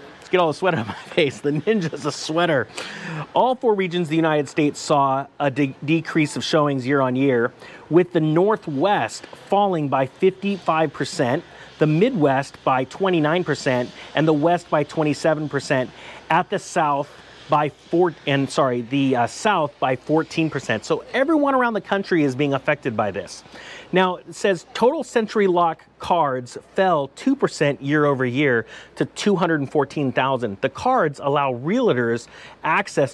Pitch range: 135-175 Hz